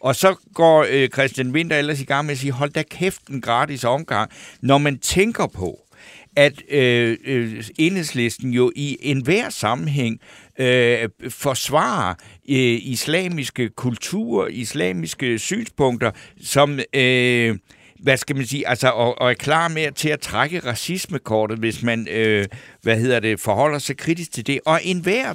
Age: 60-79